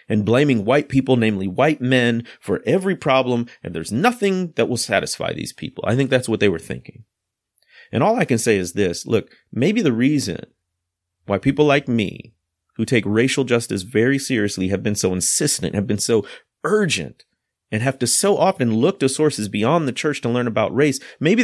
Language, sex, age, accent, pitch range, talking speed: English, male, 30-49, American, 110-145 Hz, 195 wpm